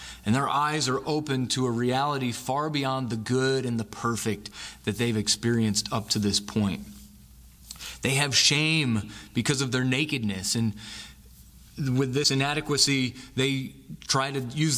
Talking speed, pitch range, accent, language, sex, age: 150 wpm, 115-145 Hz, American, English, male, 30-49